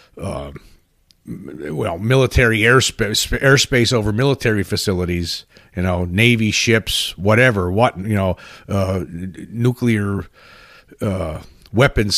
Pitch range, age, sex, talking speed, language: 95-130 Hz, 50-69, male, 105 wpm, English